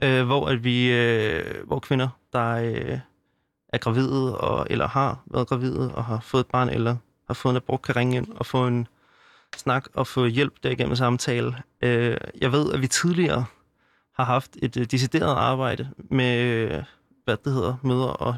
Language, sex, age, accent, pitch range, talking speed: Danish, male, 30-49, native, 115-130 Hz, 185 wpm